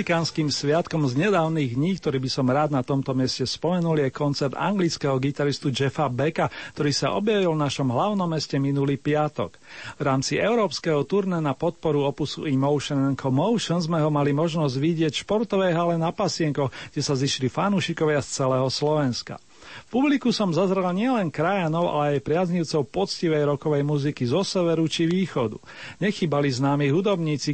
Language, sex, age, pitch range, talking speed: Slovak, male, 40-59, 140-170 Hz, 160 wpm